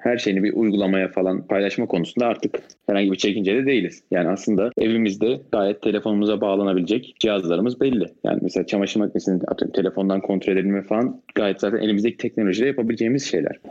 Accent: native